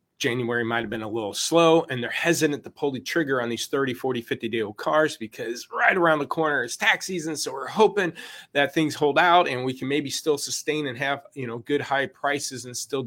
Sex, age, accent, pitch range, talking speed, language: male, 30-49, American, 120-160 Hz, 240 wpm, English